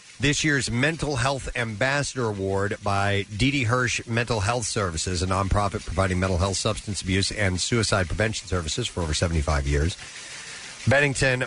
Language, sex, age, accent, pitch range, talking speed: English, male, 50-69, American, 95-125 Hz, 150 wpm